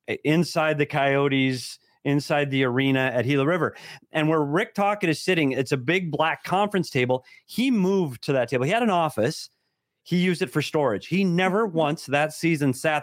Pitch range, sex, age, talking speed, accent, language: 140-185 Hz, male, 30-49, 190 wpm, American, English